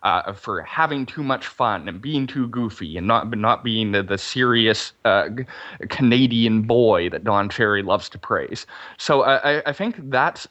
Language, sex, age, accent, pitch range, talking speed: English, male, 20-39, American, 105-130 Hz, 175 wpm